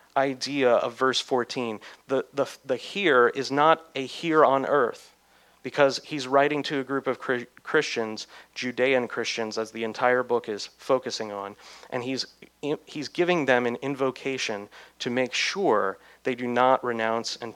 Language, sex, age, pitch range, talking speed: English, male, 30-49, 115-140 Hz, 155 wpm